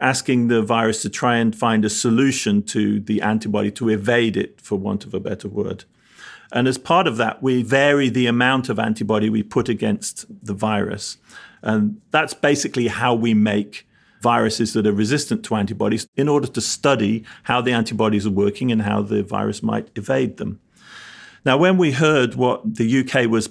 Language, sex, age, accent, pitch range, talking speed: English, male, 40-59, British, 110-135 Hz, 185 wpm